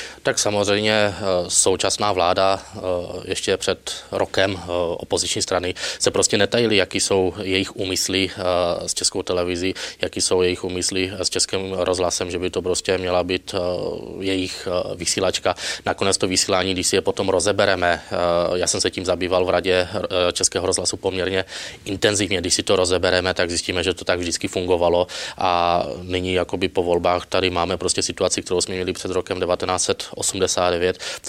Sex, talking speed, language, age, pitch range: male, 155 wpm, Czech, 20-39, 90-95 Hz